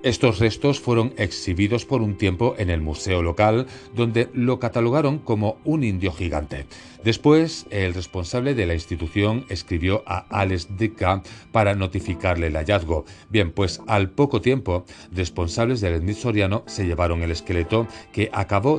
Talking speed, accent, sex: 145 wpm, Spanish, male